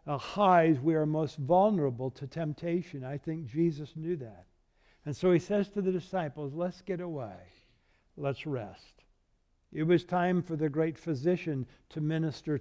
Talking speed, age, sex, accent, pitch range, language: 160 wpm, 60-79, male, American, 135-185 Hz, English